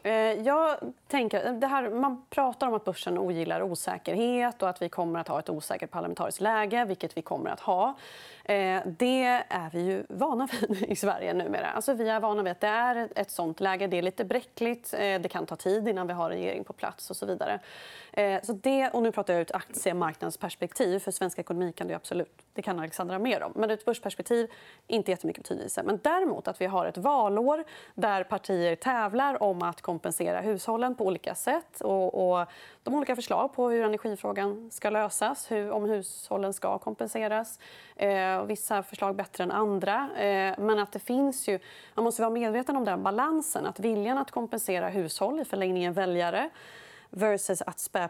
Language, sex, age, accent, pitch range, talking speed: Swedish, female, 30-49, native, 185-240 Hz, 195 wpm